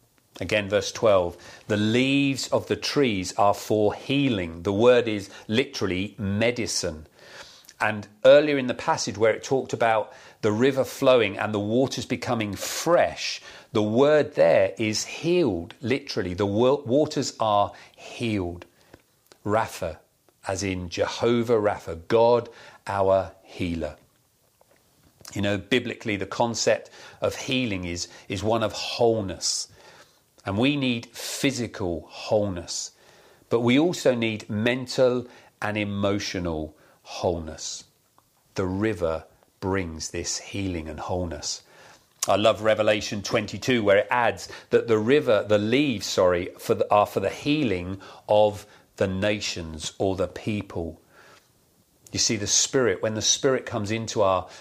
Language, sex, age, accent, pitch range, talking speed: English, male, 40-59, British, 95-125 Hz, 125 wpm